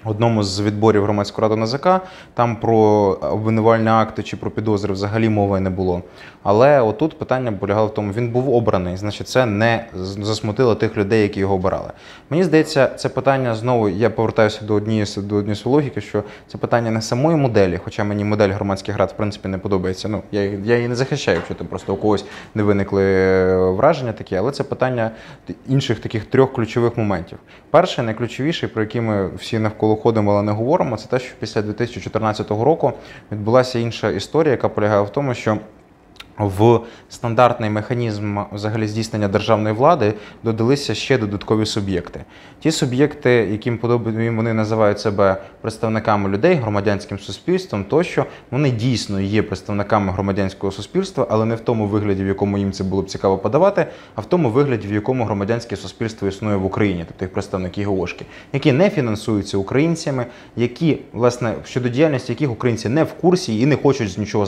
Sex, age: male, 20-39